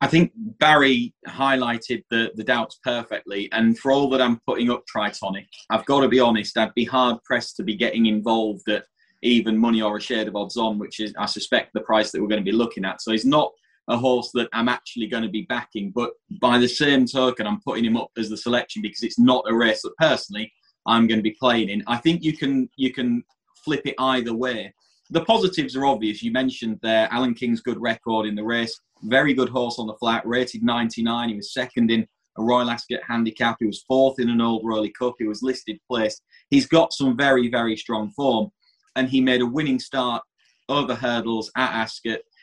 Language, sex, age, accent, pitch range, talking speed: English, male, 20-39, British, 115-130 Hz, 220 wpm